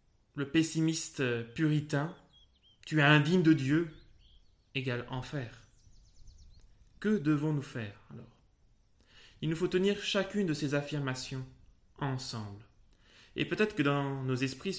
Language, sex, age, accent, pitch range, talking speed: French, male, 20-39, French, 120-155 Hz, 120 wpm